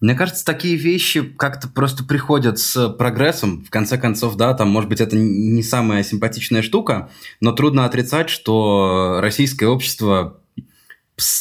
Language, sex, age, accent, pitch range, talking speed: Russian, male, 20-39, native, 100-120 Hz, 145 wpm